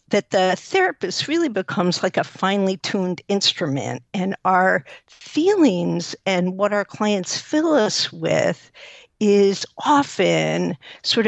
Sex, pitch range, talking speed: female, 185-250 Hz, 120 wpm